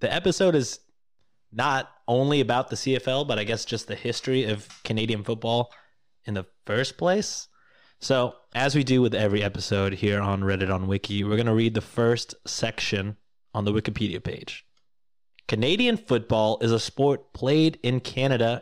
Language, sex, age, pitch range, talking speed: English, male, 20-39, 105-140 Hz, 170 wpm